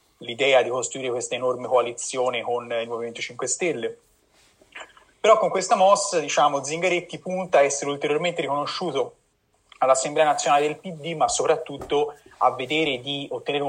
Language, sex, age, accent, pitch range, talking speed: Italian, male, 30-49, native, 125-185 Hz, 140 wpm